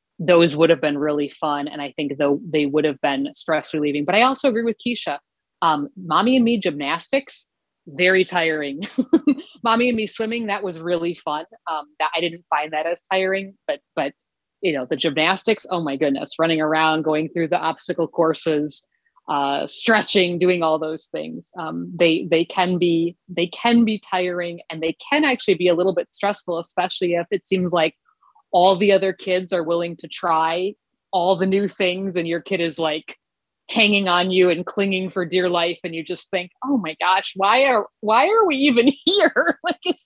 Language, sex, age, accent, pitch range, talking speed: English, female, 30-49, American, 160-210 Hz, 195 wpm